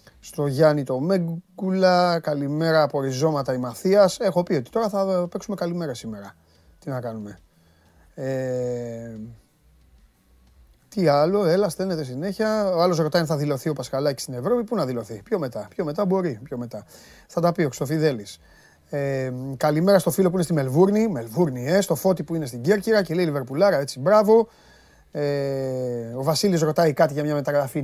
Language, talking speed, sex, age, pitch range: Greek, 170 wpm, male, 30-49, 125-180 Hz